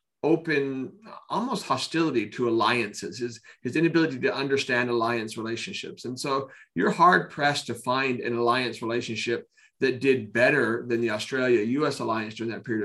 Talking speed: 150 wpm